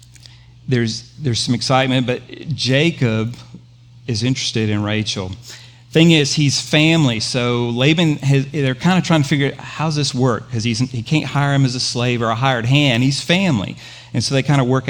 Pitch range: 120-135 Hz